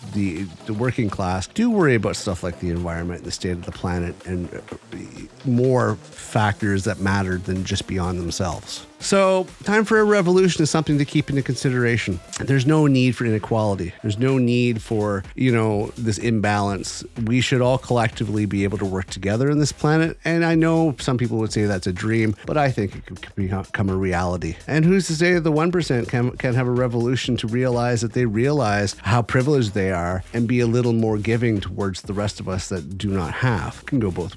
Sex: male